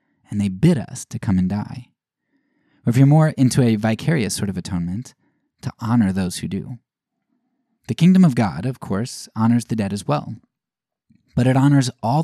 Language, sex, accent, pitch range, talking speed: English, male, American, 100-130 Hz, 185 wpm